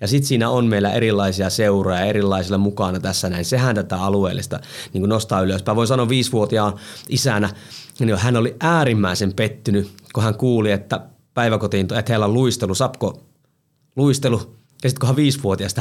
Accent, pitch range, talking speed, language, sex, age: native, 100-135 Hz, 155 wpm, Finnish, male, 30-49